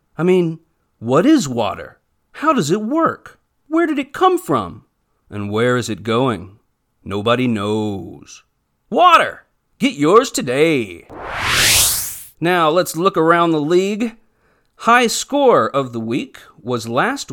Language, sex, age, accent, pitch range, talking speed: English, male, 40-59, American, 120-165 Hz, 130 wpm